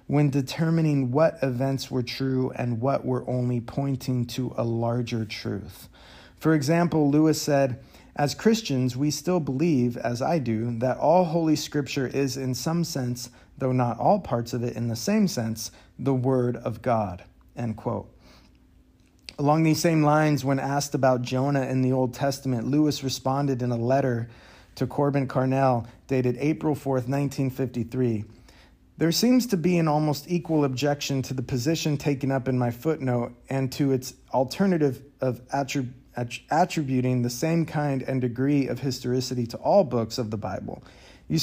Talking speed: 165 wpm